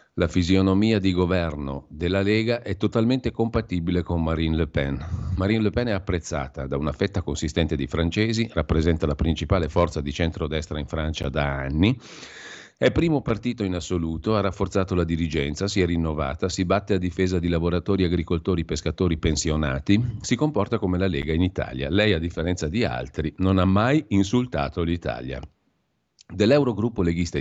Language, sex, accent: Italian, male, native